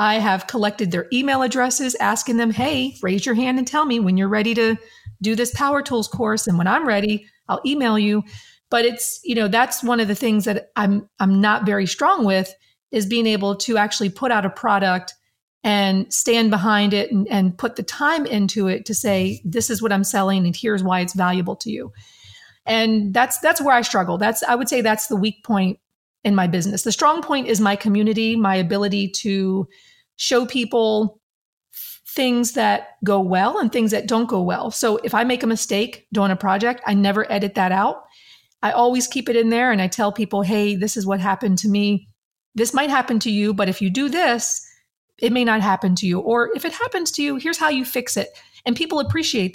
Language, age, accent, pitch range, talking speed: English, 40-59, American, 200-240 Hz, 220 wpm